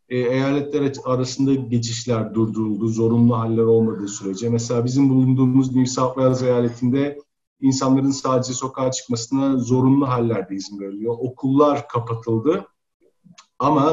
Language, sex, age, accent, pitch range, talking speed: Turkish, male, 50-69, native, 120-145 Hz, 110 wpm